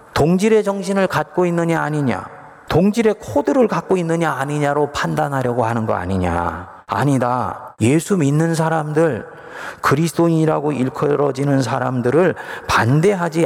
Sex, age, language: male, 30-49, Korean